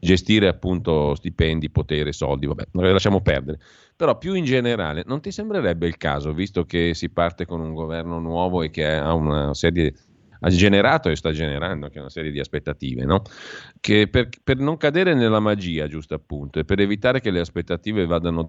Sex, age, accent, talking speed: male, 40-59, native, 195 wpm